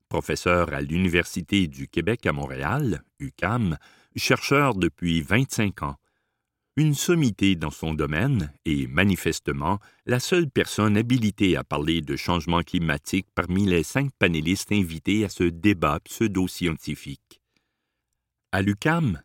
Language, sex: French, male